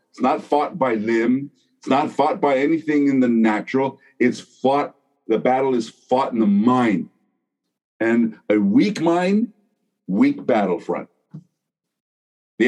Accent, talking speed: American, 135 wpm